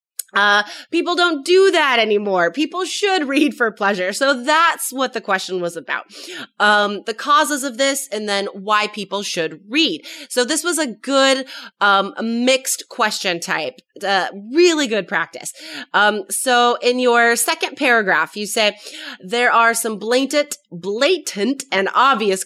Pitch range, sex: 200-280 Hz, female